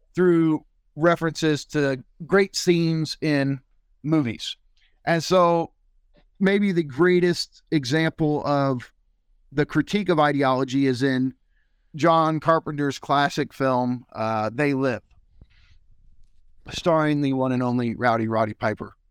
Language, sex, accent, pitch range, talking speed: English, male, American, 110-160 Hz, 110 wpm